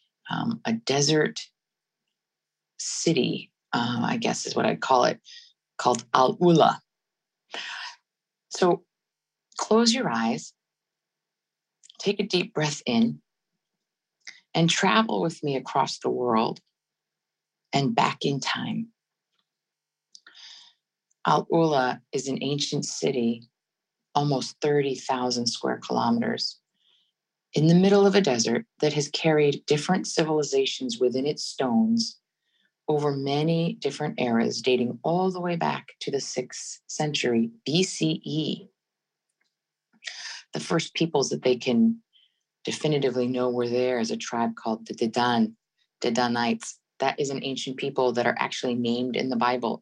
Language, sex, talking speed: English, female, 120 wpm